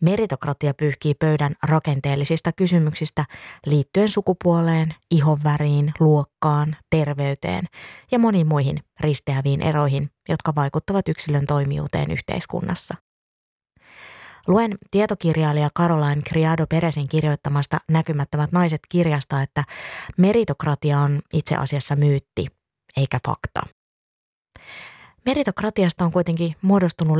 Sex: female